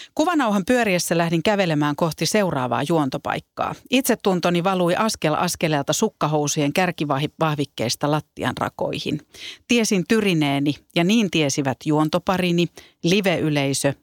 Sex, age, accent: female, 40-59, native